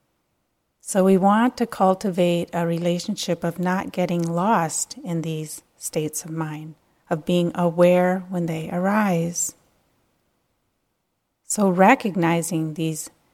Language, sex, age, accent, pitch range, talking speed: English, female, 30-49, American, 170-190 Hz, 115 wpm